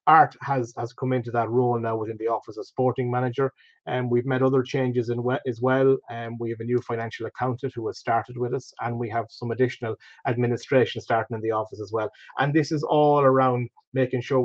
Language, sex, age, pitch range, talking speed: English, male, 30-49, 120-135 Hz, 230 wpm